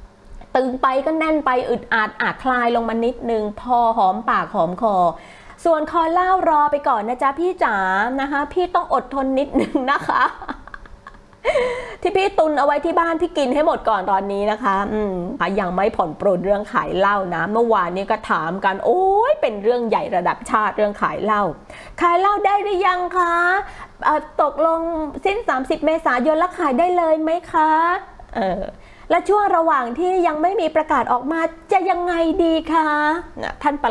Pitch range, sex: 225-330 Hz, female